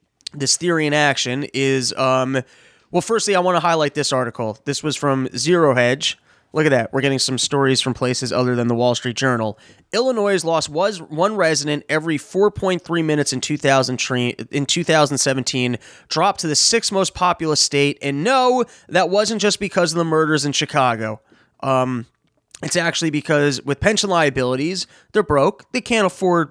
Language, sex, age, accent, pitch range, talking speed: English, male, 20-39, American, 140-195 Hz, 165 wpm